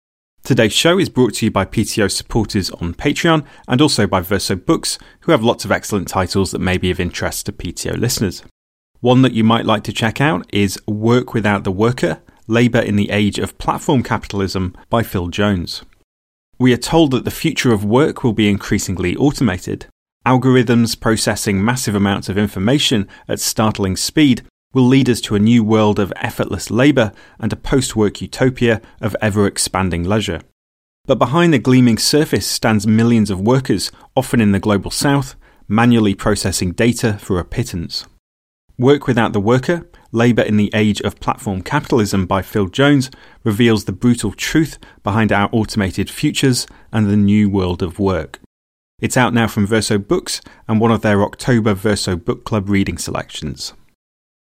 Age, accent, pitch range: 30-49, British, 100-120 Hz